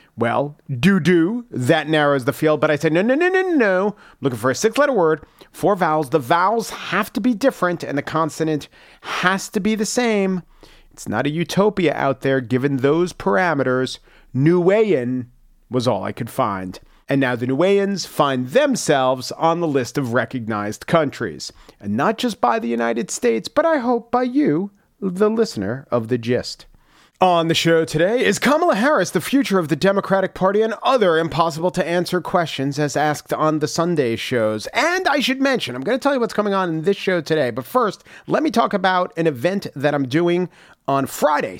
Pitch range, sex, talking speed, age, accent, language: 135-195 Hz, male, 195 wpm, 40-59, American, English